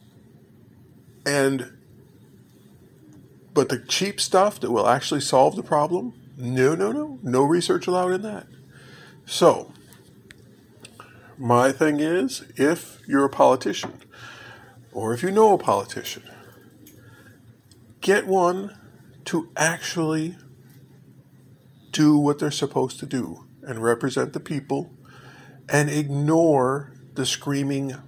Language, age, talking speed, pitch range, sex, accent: English, 50-69, 110 wpm, 125-150 Hz, male, American